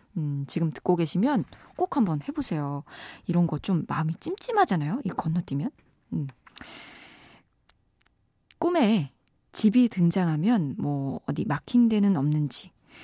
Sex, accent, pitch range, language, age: female, native, 150-230 Hz, Korean, 20-39